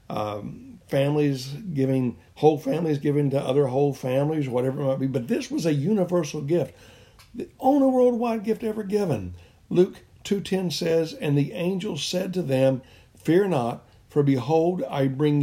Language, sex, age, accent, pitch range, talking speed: English, male, 60-79, American, 110-155 Hz, 160 wpm